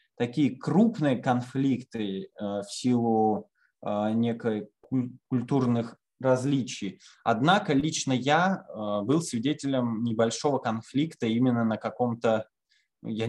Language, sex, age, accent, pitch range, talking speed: Russian, male, 20-39, native, 110-145 Hz, 85 wpm